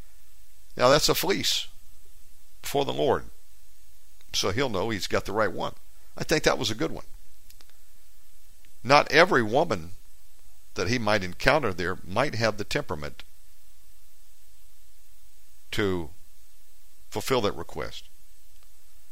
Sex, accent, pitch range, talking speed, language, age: male, American, 80-100 Hz, 120 wpm, English, 60-79